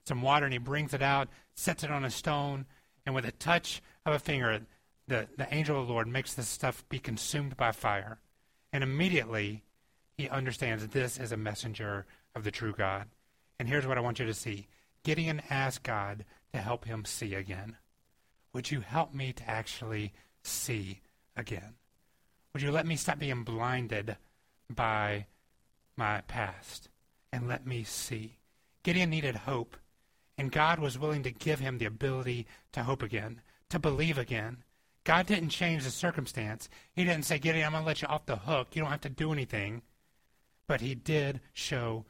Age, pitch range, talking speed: 30-49, 110-145 Hz, 180 wpm